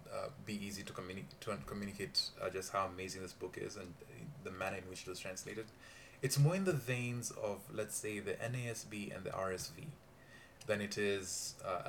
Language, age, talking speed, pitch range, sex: English, 20-39, 190 wpm, 95-135 Hz, male